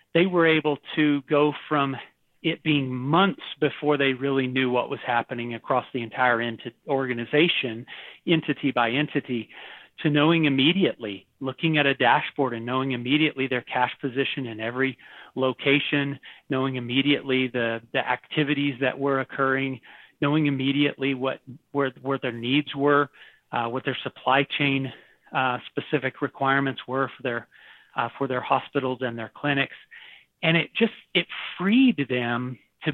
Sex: male